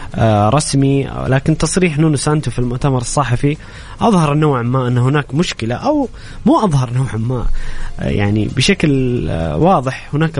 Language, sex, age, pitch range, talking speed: English, male, 20-39, 120-150 Hz, 125 wpm